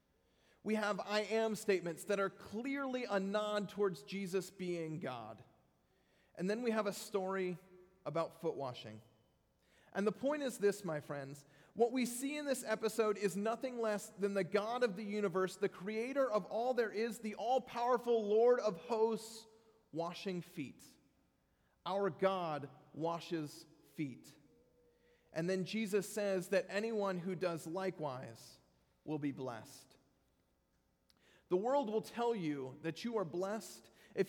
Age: 40-59